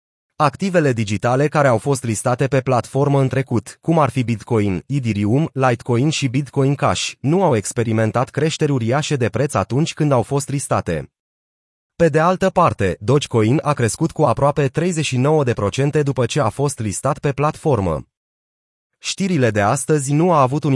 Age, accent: 30-49, native